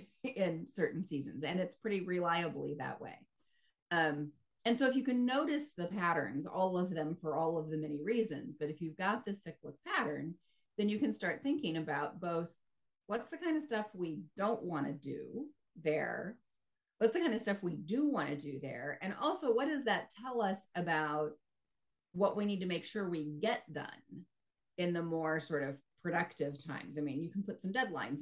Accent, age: American, 30-49